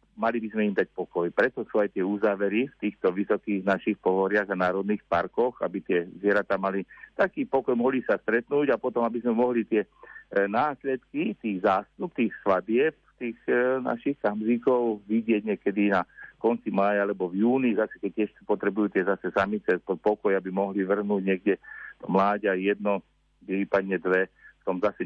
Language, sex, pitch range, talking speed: Slovak, male, 95-115 Hz, 170 wpm